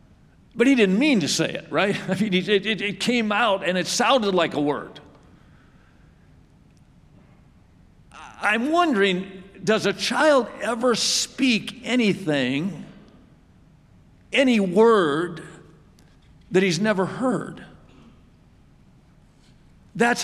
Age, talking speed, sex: 50-69, 105 wpm, male